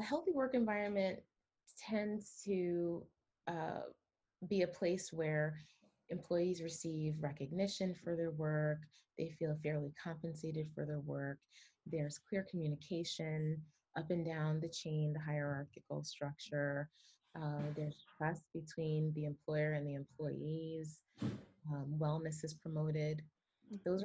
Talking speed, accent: 120 wpm, American